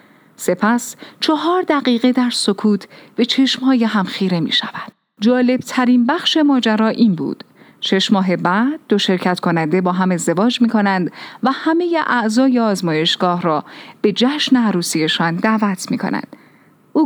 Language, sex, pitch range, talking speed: Persian, female, 185-270 Hz, 135 wpm